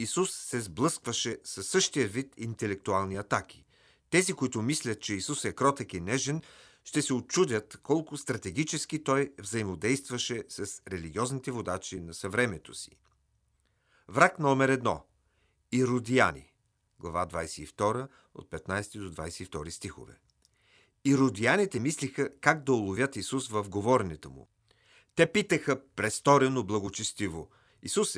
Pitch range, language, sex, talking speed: 100-135 Hz, Bulgarian, male, 115 wpm